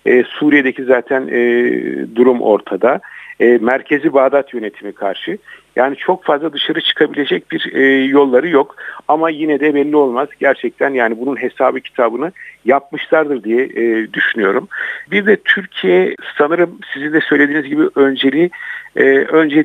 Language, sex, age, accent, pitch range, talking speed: Turkish, male, 50-69, native, 120-150 Hz, 120 wpm